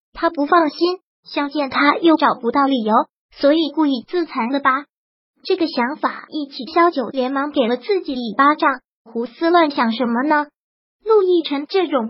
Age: 20-39